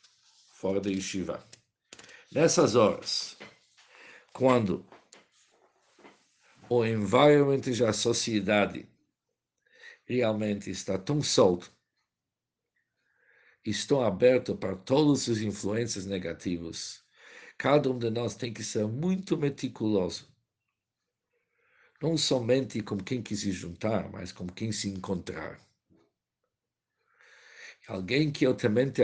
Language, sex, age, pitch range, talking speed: Portuguese, male, 50-69, 100-130 Hz, 100 wpm